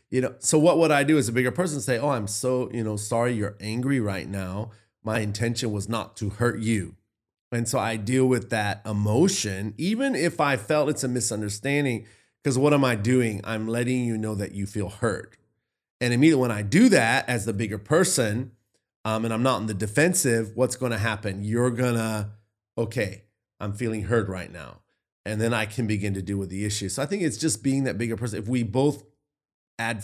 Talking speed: 215 wpm